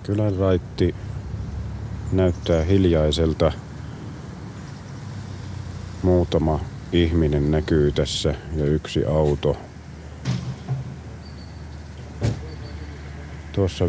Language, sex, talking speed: Finnish, male, 50 wpm